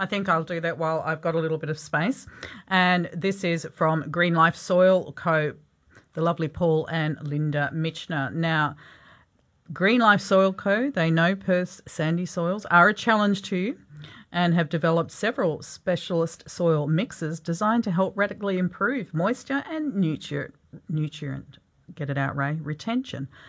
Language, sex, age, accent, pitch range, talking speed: English, female, 40-59, Australian, 150-195 Hz, 160 wpm